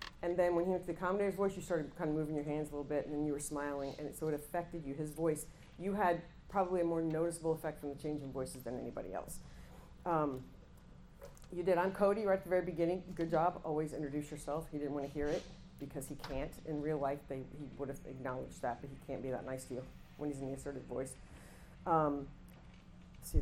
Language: English